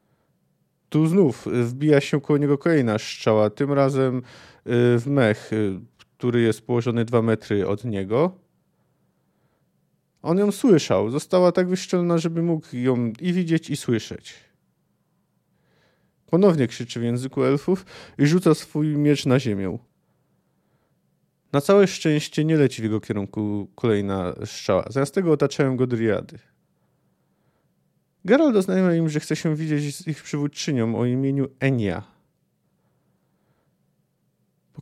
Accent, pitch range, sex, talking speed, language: native, 120-155 Hz, male, 125 wpm, Polish